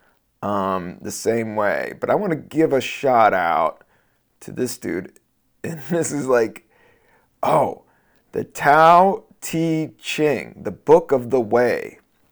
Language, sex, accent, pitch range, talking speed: English, male, American, 120-165 Hz, 140 wpm